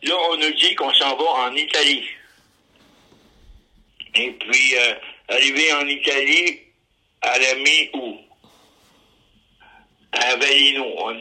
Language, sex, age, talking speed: French, male, 60-79, 110 wpm